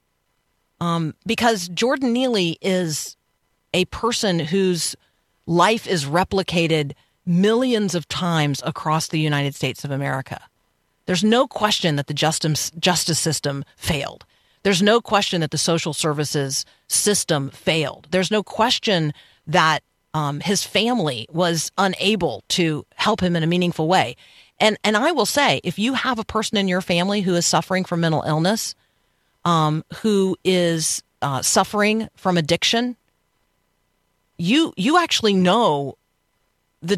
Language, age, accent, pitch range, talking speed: English, 40-59, American, 155-205 Hz, 135 wpm